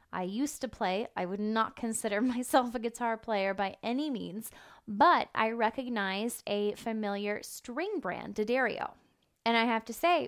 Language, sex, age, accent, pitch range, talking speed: English, female, 10-29, American, 205-240 Hz, 165 wpm